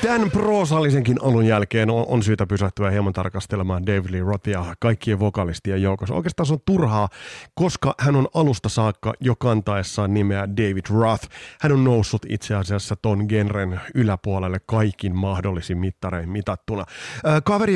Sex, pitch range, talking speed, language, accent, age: male, 105-135 Hz, 145 wpm, Finnish, native, 30-49